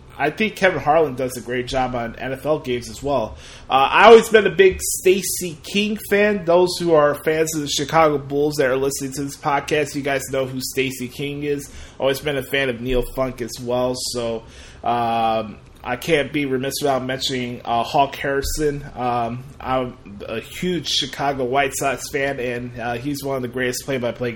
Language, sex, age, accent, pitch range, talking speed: English, male, 20-39, American, 125-185 Hz, 195 wpm